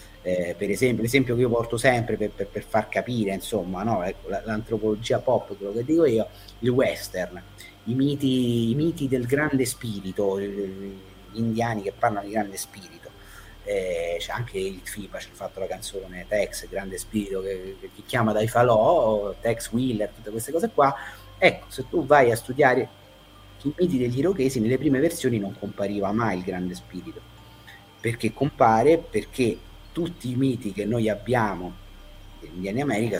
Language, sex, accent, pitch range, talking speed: Italian, male, native, 100-125 Hz, 155 wpm